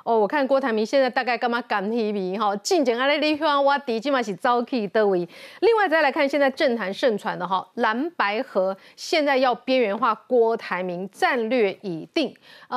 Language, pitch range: Chinese, 215-285 Hz